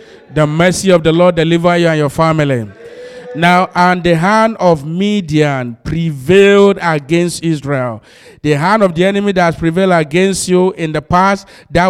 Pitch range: 165-210 Hz